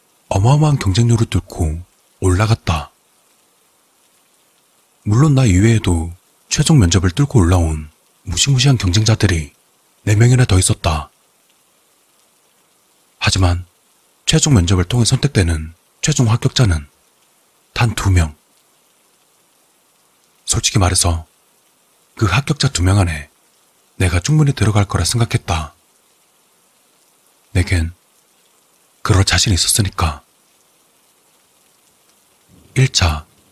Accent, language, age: native, Korean, 30-49